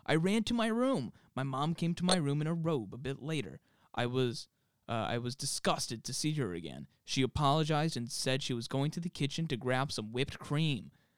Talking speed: 225 wpm